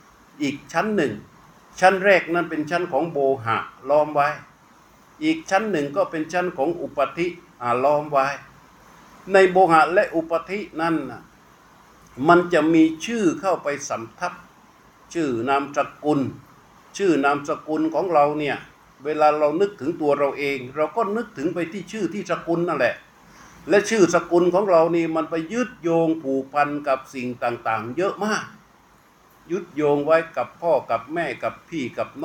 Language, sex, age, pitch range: Thai, male, 60-79, 140-175 Hz